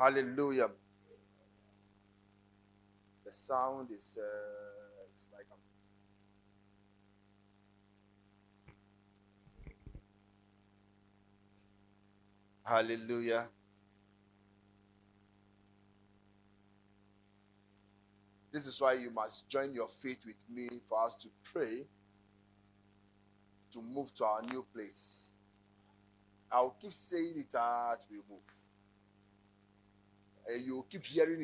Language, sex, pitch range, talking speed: English, male, 100-125 Hz, 75 wpm